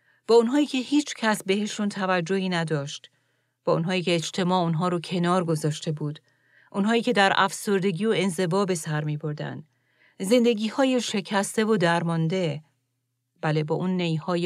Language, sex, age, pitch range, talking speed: Persian, female, 40-59, 155-190 Hz, 145 wpm